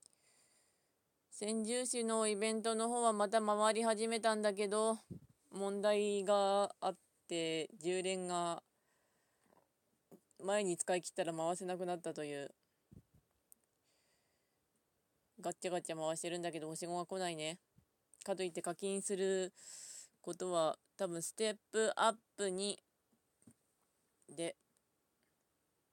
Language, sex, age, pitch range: Japanese, female, 20-39, 170-215 Hz